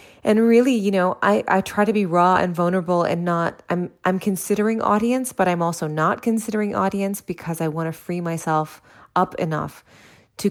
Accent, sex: American, female